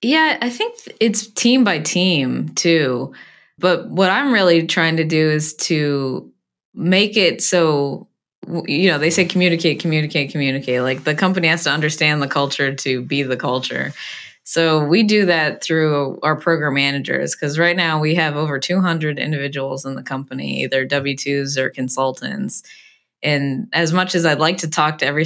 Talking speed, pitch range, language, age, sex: 170 wpm, 140-180 Hz, English, 20-39, female